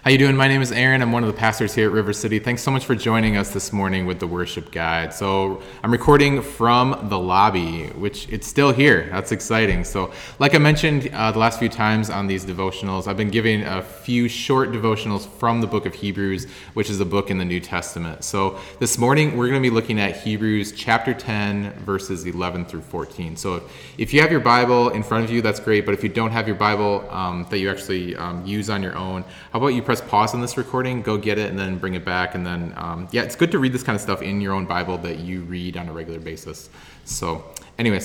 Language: English